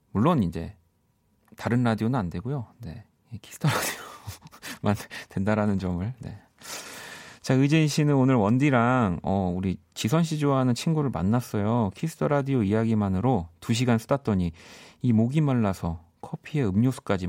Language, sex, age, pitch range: Korean, male, 40-59, 90-130 Hz